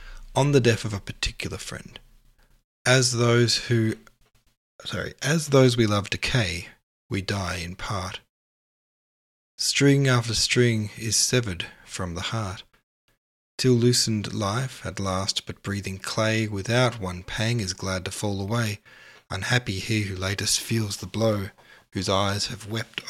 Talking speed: 145 wpm